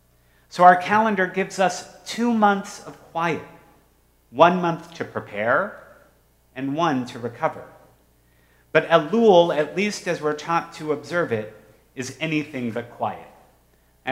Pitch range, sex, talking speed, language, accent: 115-170 Hz, male, 135 wpm, English, American